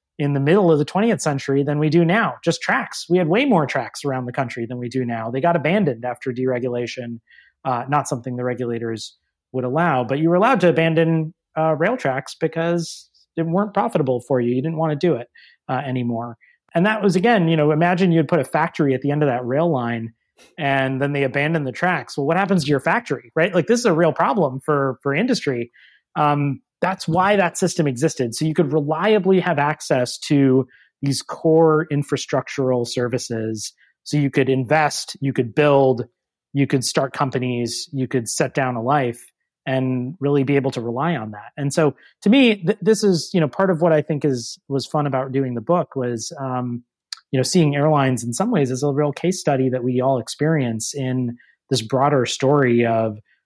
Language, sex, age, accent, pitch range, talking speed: English, male, 30-49, American, 130-165 Hz, 210 wpm